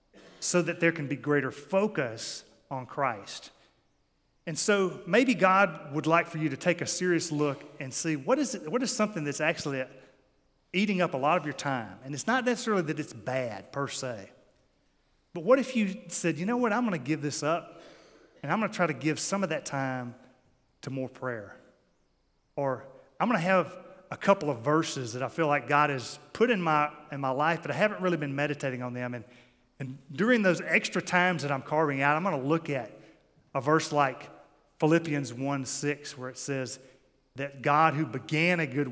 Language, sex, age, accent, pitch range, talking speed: English, male, 30-49, American, 135-175 Hz, 205 wpm